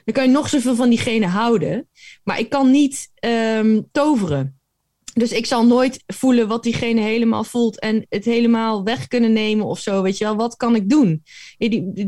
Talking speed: 190 wpm